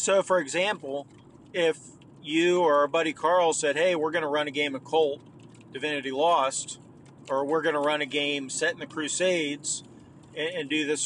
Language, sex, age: English, male, 40-59